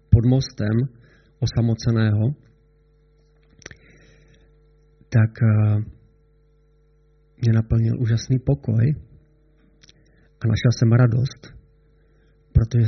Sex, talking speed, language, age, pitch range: male, 60 wpm, Czech, 40-59, 110-150 Hz